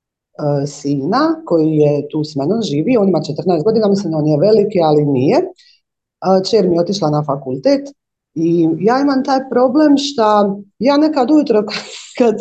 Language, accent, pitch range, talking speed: Croatian, native, 160-240 Hz, 165 wpm